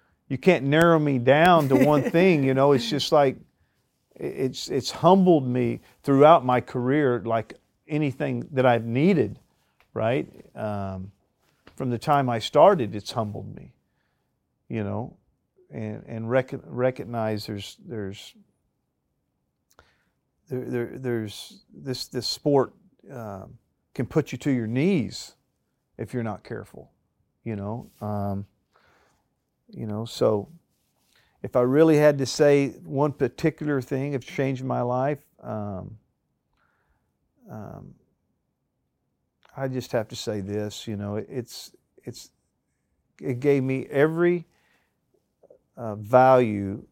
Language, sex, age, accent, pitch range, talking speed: English, male, 40-59, American, 110-140 Hz, 125 wpm